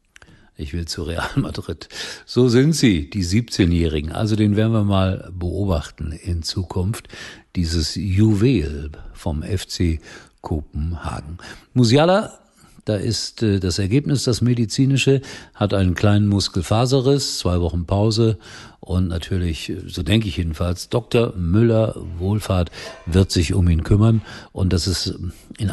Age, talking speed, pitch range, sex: 50-69, 130 wpm, 85-105 Hz, male